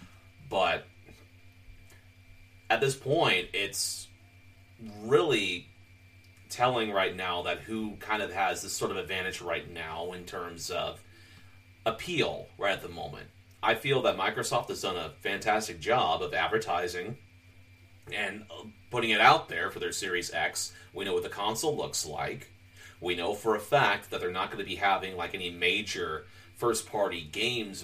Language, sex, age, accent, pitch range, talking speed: English, male, 30-49, American, 95-110 Hz, 155 wpm